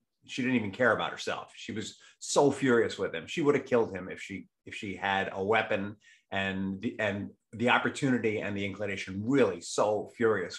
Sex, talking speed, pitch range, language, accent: male, 200 wpm, 110-135 Hz, English, American